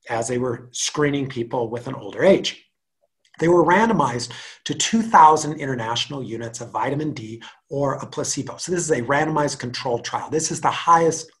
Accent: American